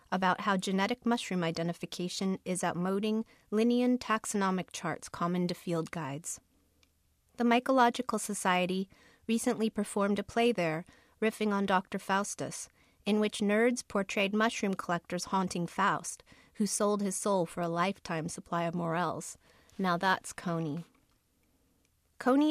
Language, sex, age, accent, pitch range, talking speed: English, female, 40-59, American, 175-215 Hz, 130 wpm